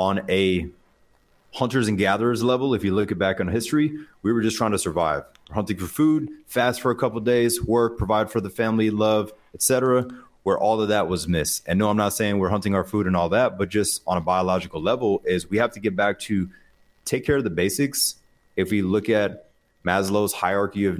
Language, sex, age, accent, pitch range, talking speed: English, male, 30-49, American, 95-115 Hz, 225 wpm